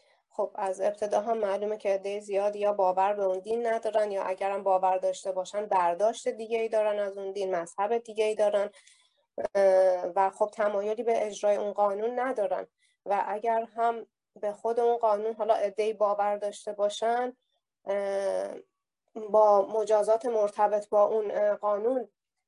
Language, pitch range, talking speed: Persian, 195-230 Hz, 150 wpm